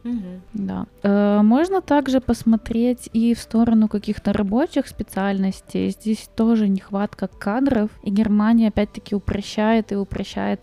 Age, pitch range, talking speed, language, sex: 20-39, 200-230 Hz, 115 wpm, Russian, female